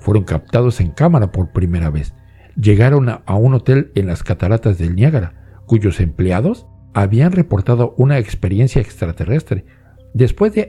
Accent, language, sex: Mexican, Spanish, male